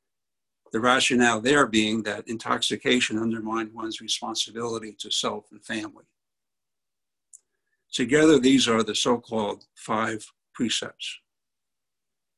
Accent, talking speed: American, 100 wpm